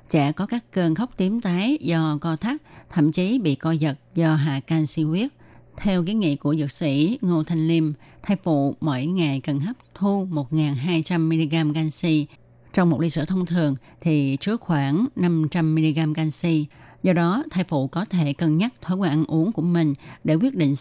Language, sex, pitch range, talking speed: Vietnamese, female, 150-180 Hz, 185 wpm